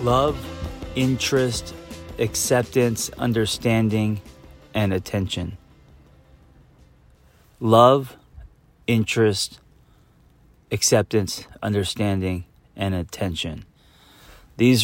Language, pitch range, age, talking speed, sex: English, 95-115 Hz, 30-49, 55 wpm, male